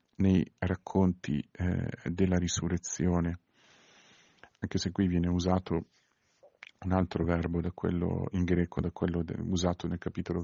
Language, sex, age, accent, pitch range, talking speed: Italian, male, 50-69, native, 90-110 Hz, 115 wpm